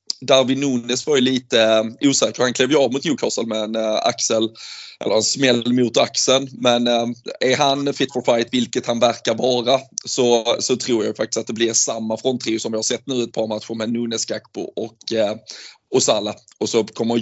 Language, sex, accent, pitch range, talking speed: Swedish, male, native, 115-130 Hz, 200 wpm